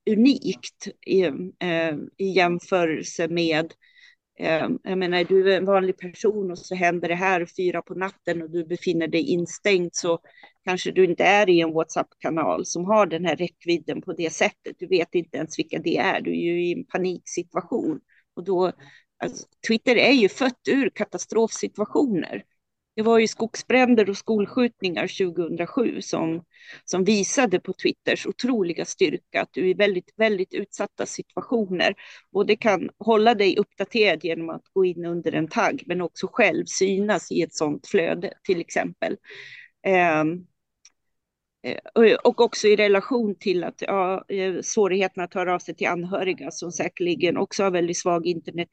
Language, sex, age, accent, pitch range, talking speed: Swedish, female, 40-59, native, 175-215 Hz, 160 wpm